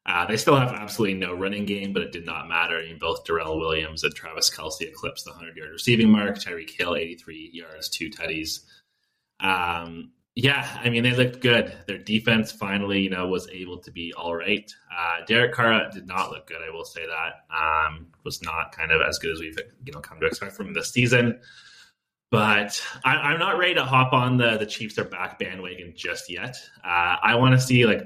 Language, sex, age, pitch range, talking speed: English, male, 20-39, 85-120 Hz, 215 wpm